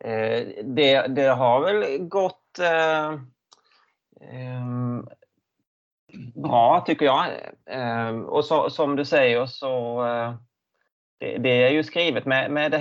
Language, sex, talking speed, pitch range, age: Swedish, male, 120 wpm, 110-140 Hz, 30-49